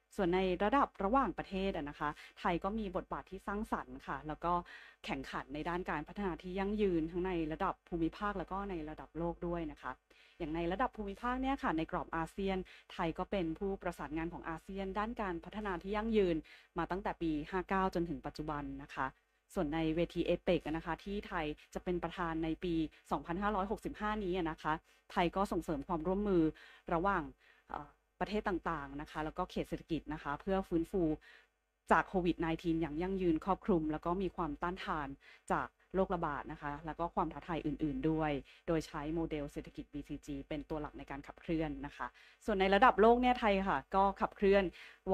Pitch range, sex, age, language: 155-190 Hz, female, 30-49, Thai